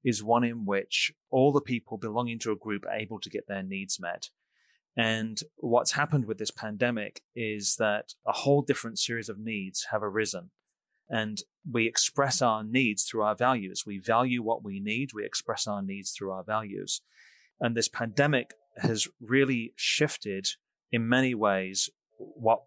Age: 30-49